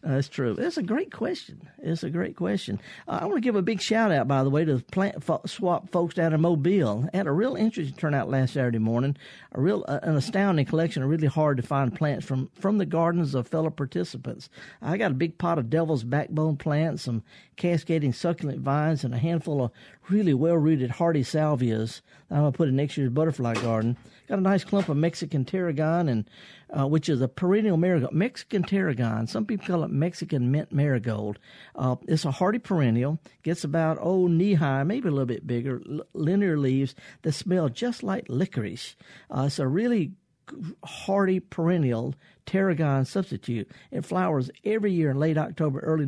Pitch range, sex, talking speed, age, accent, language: 135-175 Hz, male, 190 wpm, 50-69, American, English